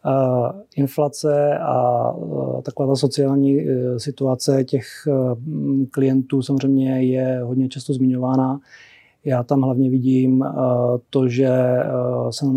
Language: Czech